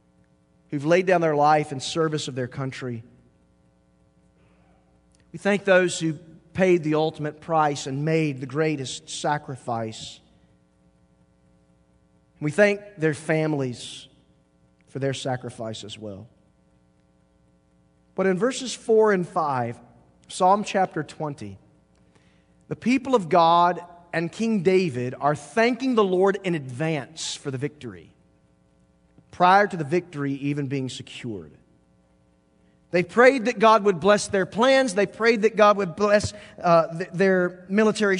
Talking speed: 125 wpm